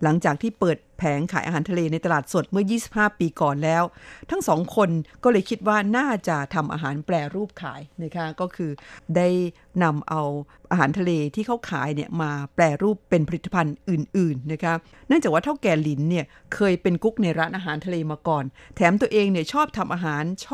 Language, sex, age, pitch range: Thai, female, 50-69, 160-205 Hz